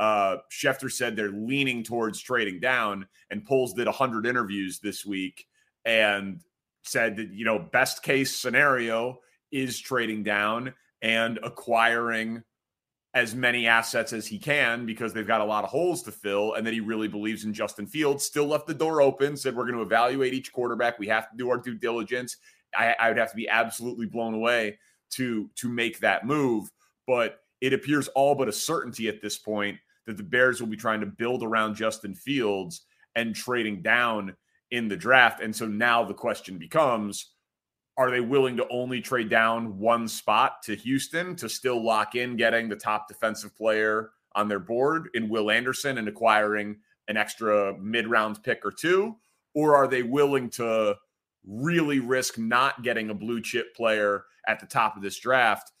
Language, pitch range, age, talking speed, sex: English, 110-125 Hz, 30-49, 185 wpm, male